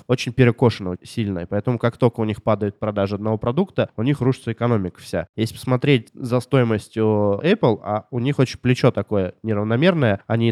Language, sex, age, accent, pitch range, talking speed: Russian, male, 20-39, native, 105-130 Hz, 175 wpm